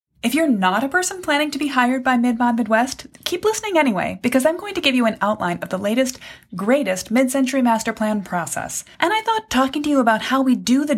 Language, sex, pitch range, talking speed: English, female, 185-250 Hz, 230 wpm